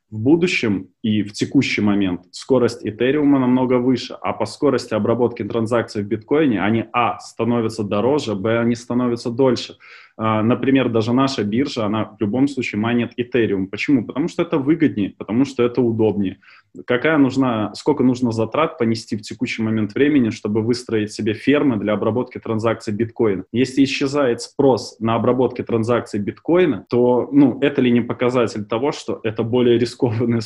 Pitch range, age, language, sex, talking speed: 110-135 Hz, 20-39, Russian, male, 160 wpm